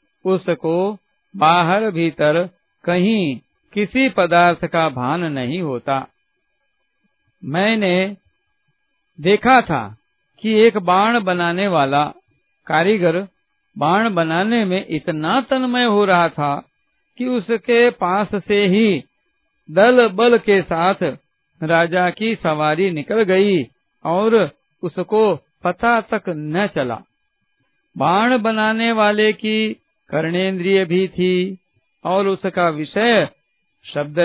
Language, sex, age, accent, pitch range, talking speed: Hindi, male, 50-69, native, 165-215 Hz, 100 wpm